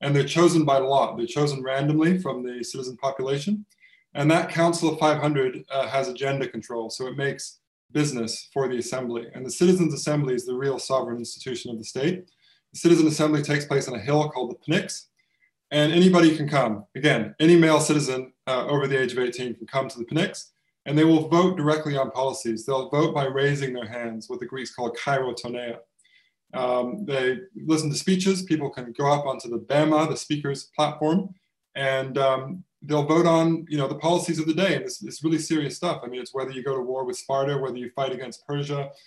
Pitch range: 130-160 Hz